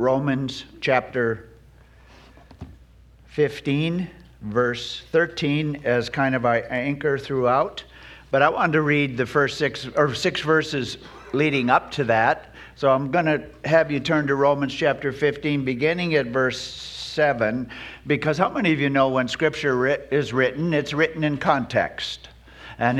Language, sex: English, male